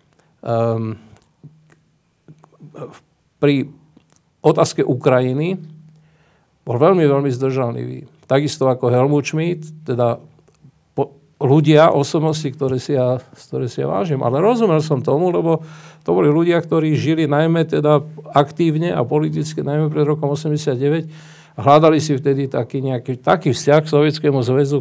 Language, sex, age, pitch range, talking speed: Slovak, male, 50-69, 130-155 Hz, 130 wpm